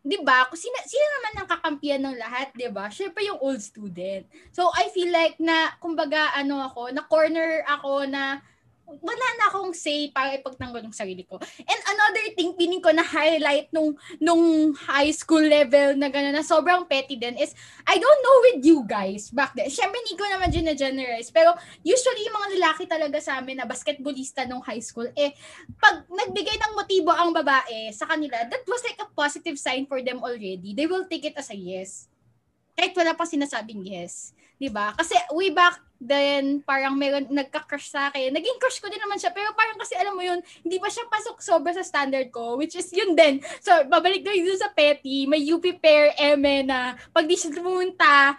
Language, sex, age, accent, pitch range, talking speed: English, female, 20-39, Filipino, 275-355 Hz, 200 wpm